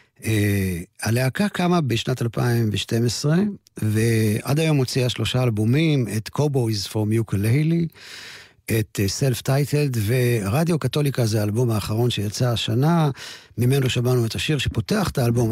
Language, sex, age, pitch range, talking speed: Hebrew, male, 50-69, 115-145 Hz, 120 wpm